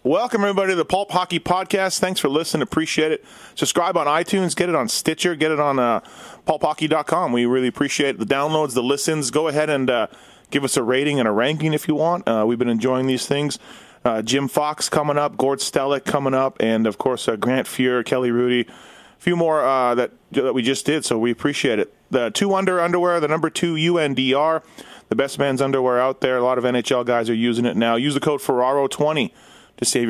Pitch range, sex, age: 125-155 Hz, male, 30-49